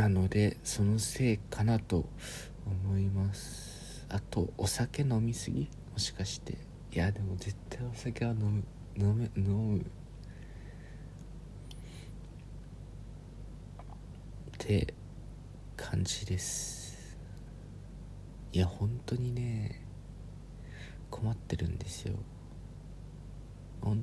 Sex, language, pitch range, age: male, Japanese, 95-120 Hz, 40-59